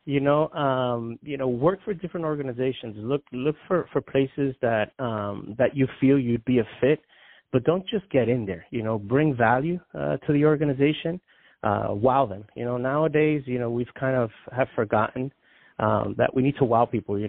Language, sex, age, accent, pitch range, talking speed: English, male, 40-59, American, 110-140 Hz, 200 wpm